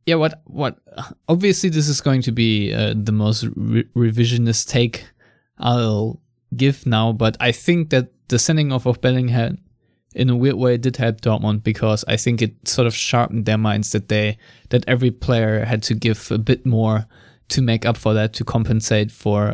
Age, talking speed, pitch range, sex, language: 20-39, 190 wpm, 110-120 Hz, male, English